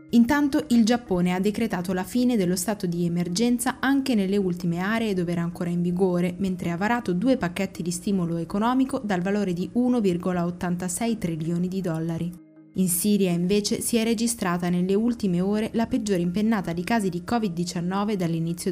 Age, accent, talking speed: 20-39, native, 165 wpm